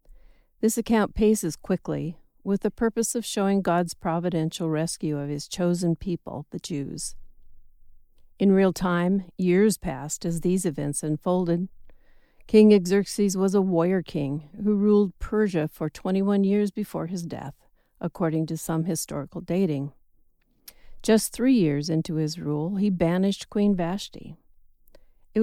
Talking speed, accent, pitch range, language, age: 135 wpm, American, 155-205 Hz, English, 50-69